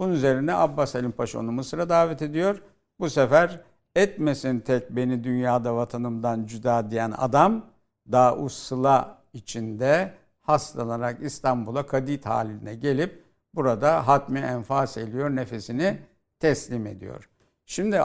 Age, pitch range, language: 60-79, 120-145 Hz, Turkish